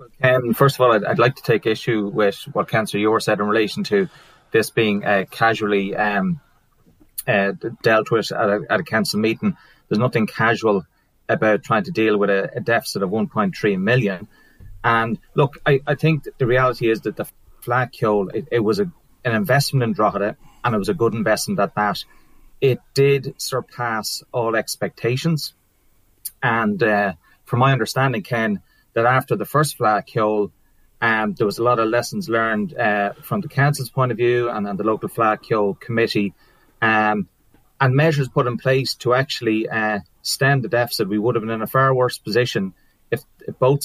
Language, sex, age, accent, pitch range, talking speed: English, male, 30-49, Irish, 105-140 Hz, 185 wpm